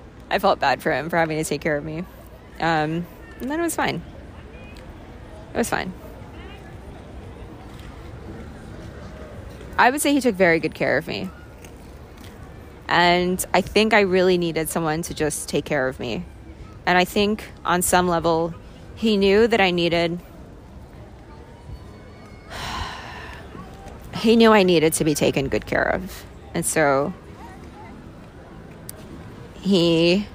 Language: English